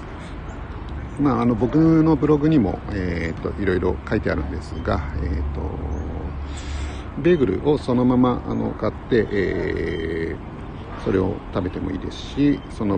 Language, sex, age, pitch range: Japanese, male, 50-69, 85-105 Hz